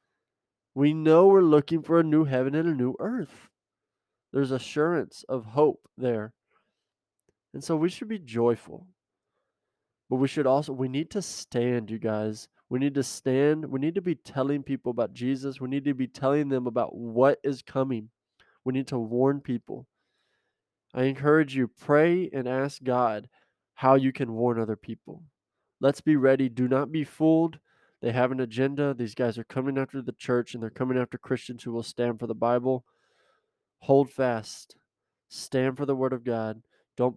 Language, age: English, 20-39